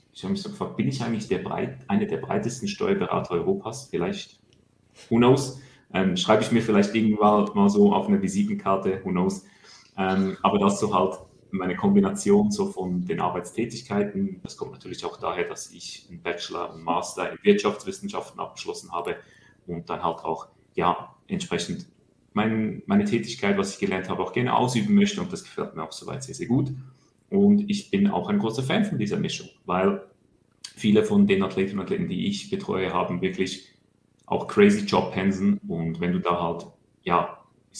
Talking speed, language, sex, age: 185 wpm, German, male, 30-49